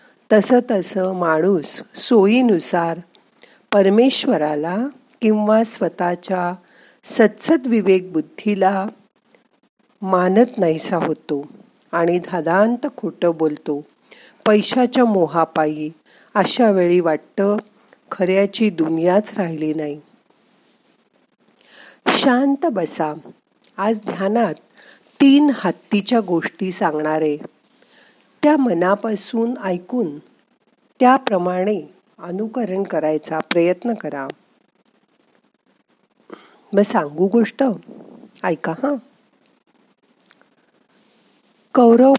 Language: Marathi